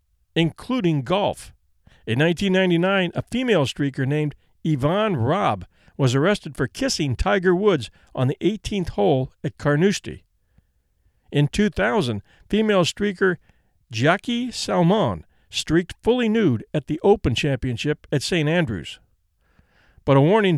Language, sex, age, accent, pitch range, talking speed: English, male, 50-69, American, 120-185 Hz, 120 wpm